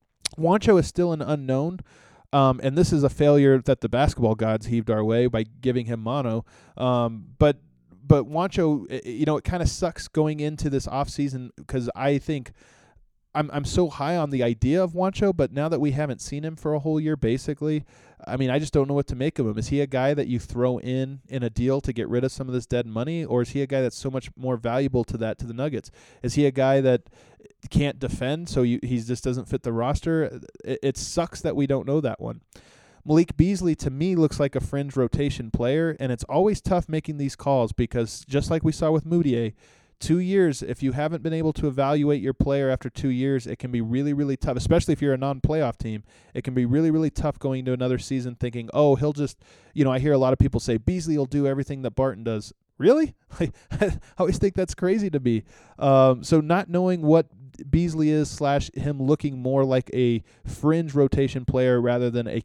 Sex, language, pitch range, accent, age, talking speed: male, English, 125-150 Hz, American, 20-39, 230 wpm